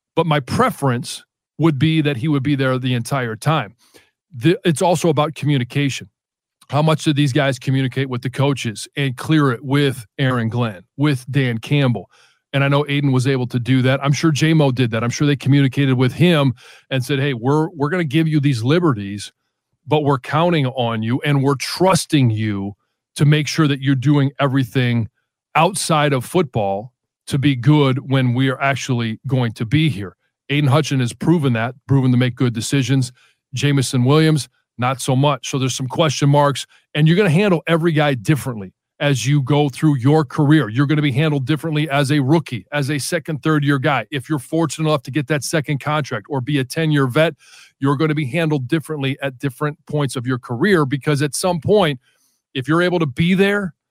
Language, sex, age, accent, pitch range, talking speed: English, male, 40-59, American, 130-155 Hz, 200 wpm